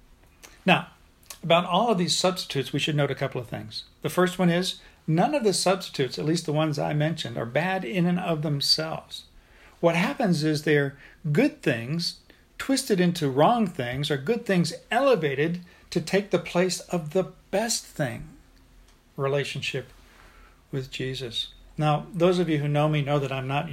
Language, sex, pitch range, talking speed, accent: English, male, 135-170 Hz, 175 wpm, American